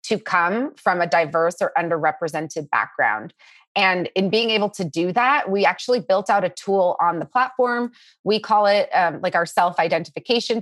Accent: American